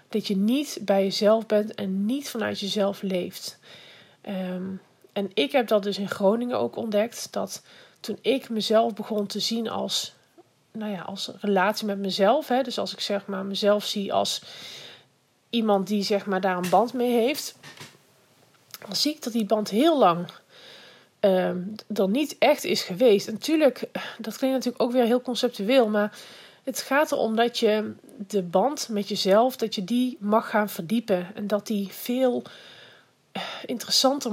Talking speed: 170 wpm